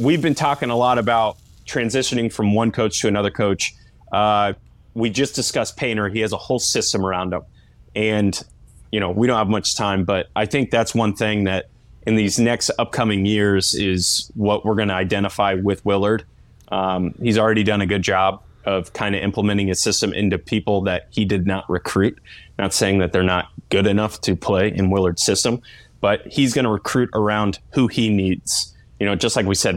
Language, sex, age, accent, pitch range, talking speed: English, male, 20-39, American, 95-110 Hz, 200 wpm